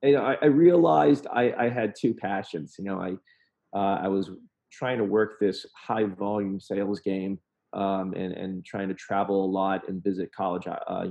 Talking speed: 195 wpm